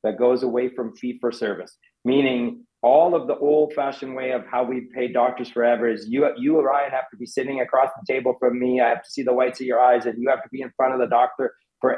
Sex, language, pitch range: male, English, 120-135 Hz